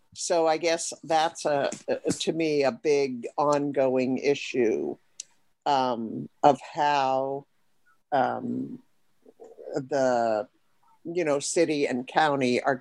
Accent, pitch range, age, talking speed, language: American, 130-170 Hz, 50-69, 110 wpm, English